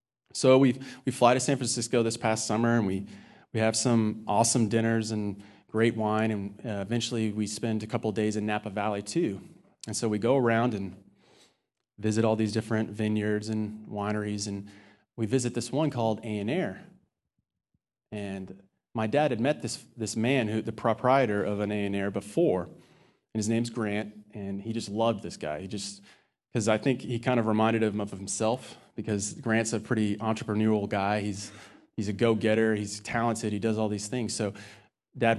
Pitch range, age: 105-115 Hz, 30-49